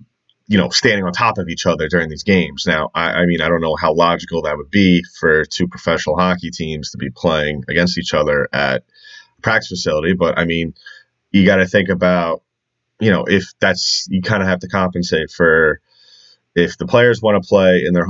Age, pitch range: 30-49, 85-100 Hz